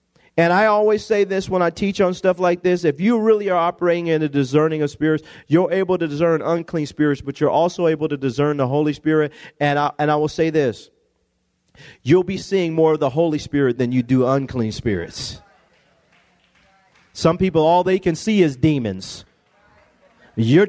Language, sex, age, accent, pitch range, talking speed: English, male, 40-59, American, 155-215 Hz, 190 wpm